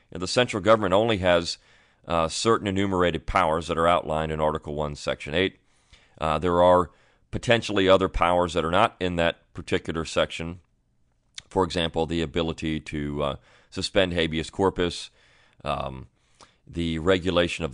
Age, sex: 40-59, male